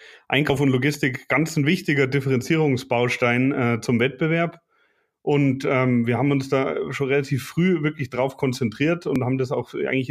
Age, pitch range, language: 30-49, 125-145 Hz, German